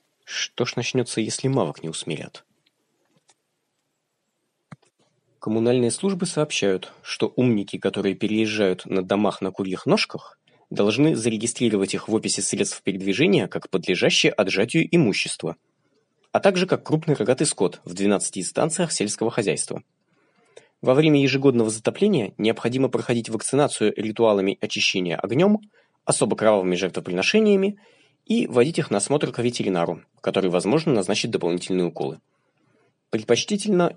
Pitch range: 100-150 Hz